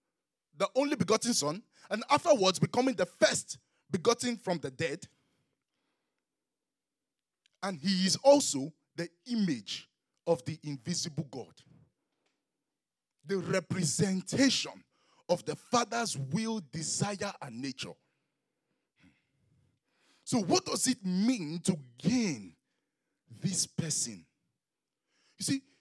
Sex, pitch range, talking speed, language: male, 160-235 Hz, 100 wpm, English